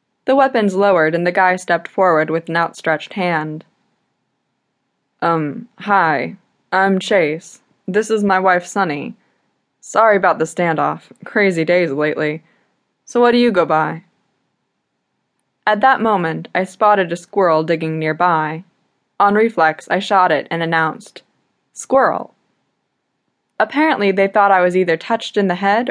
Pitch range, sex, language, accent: 165-205 Hz, female, English, American